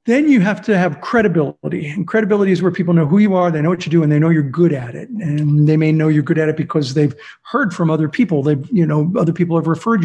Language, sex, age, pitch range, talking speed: English, male, 50-69, 160-215 Hz, 285 wpm